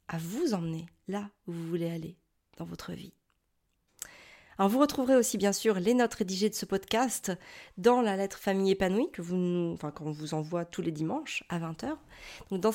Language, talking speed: French, 195 wpm